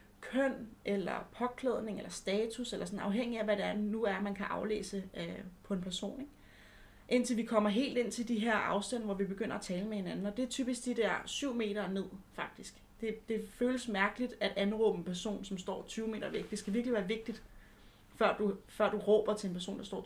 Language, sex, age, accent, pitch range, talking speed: Danish, female, 30-49, native, 195-235 Hz, 215 wpm